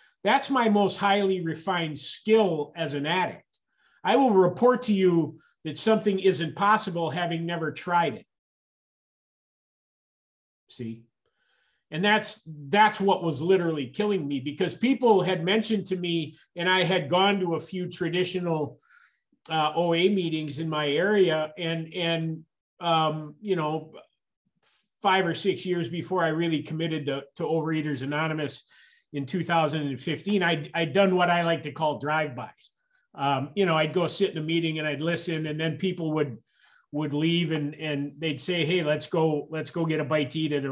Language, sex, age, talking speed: English, male, 50-69, 165 wpm